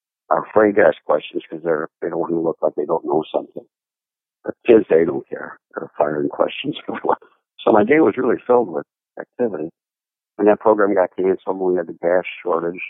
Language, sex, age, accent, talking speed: English, male, 50-69, American, 205 wpm